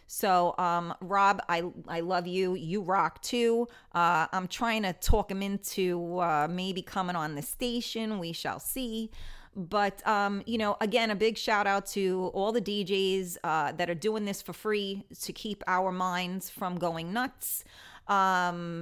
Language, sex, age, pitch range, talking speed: English, female, 30-49, 175-220 Hz, 170 wpm